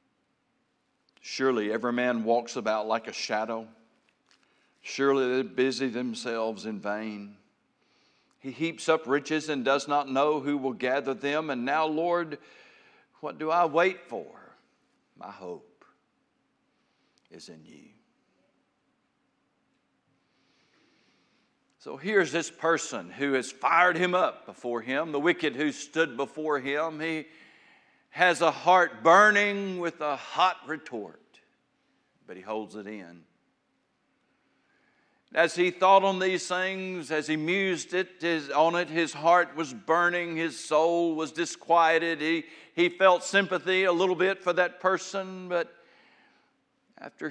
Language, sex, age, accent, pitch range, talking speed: English, male, 60-79, American, 130-180 Hz, 130 wpm